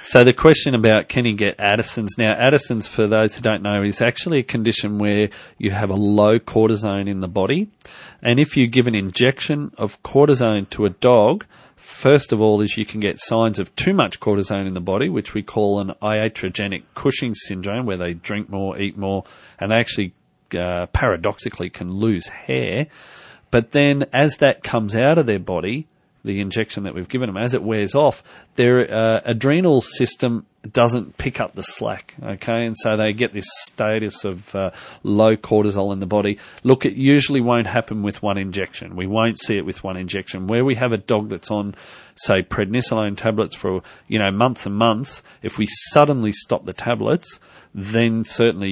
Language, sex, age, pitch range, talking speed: English, male, 40-59, 95-115 Hz, 195 wpm